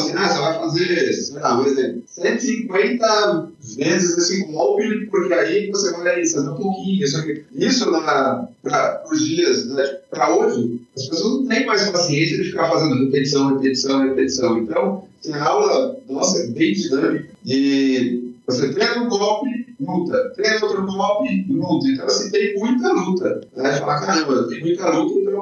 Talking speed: 170 wpm